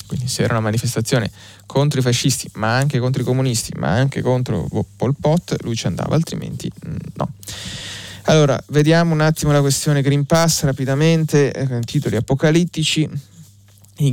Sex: male